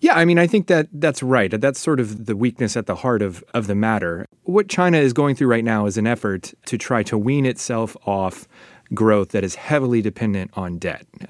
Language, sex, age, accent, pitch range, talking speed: English, male, 30-49, American, 100-125 Hz, 235 wpm